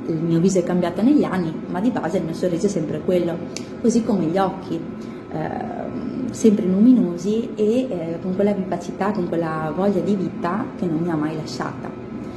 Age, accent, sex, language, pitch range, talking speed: 20-39, native, female, Italian, 170-210 Hz, 190 wpm